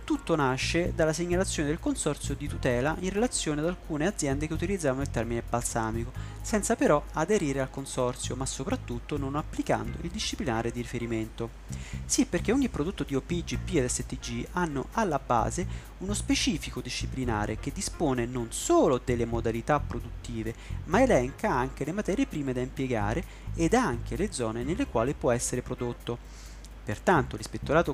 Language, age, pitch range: Italian, 30-49, 115-155 Hz